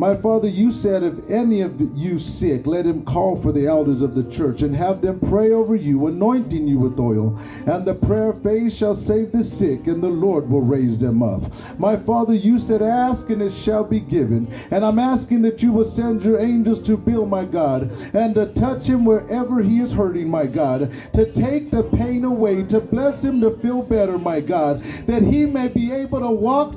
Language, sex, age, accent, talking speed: English, male, 50-69, American, 215 wpm